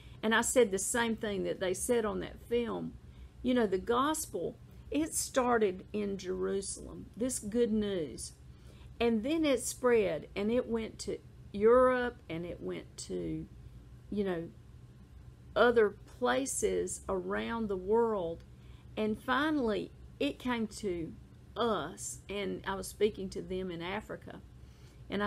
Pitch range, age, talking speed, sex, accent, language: 195-245 Hz, 50-69, 140 wpm, female, American, English